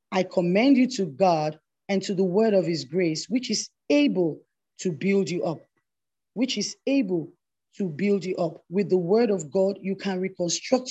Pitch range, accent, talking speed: 170-225 Hz, Nigerian, 185 wpm